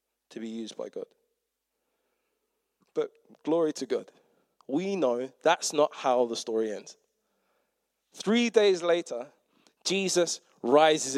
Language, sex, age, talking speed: English, male, 20-39, 120 wpm